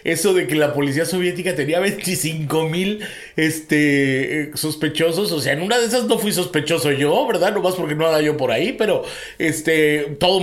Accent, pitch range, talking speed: Mexican, 125-160 Hz, 195 wpm